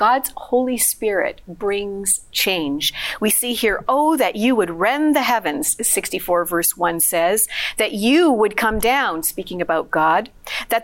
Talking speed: 155 wpm